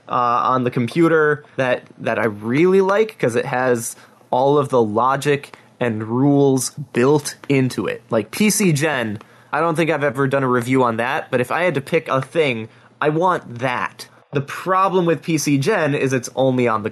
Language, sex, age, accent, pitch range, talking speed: English, male, 20-39, American, 125-165 Hz, 195 wpm